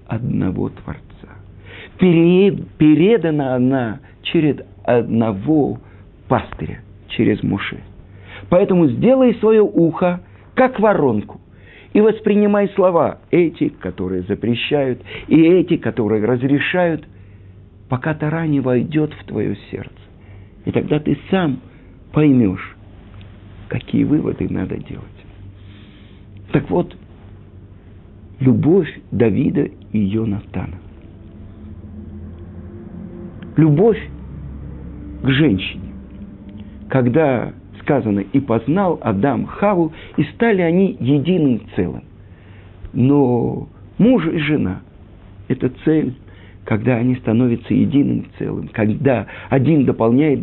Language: Russian